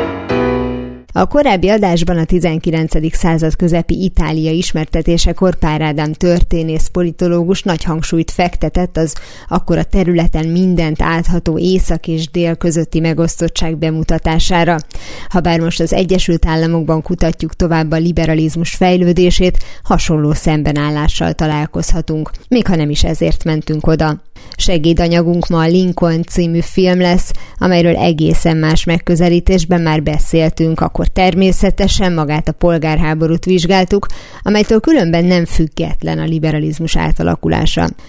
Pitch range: 160-180 Hz